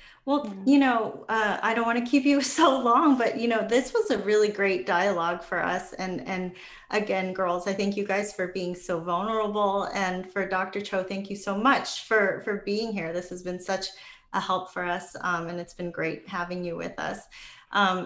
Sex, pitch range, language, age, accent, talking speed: female, 170-200 Hz, English, 30-49, American, 215 wpm